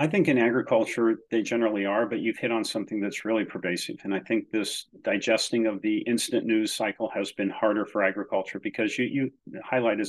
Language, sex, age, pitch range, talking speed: English, male, 40-59, 105-115 Hz, 200 wpm